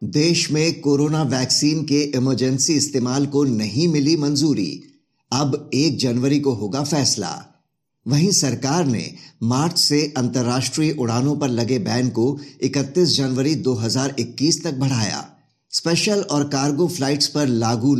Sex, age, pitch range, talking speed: male, 50-69, 130-155 Hz, 130 wpm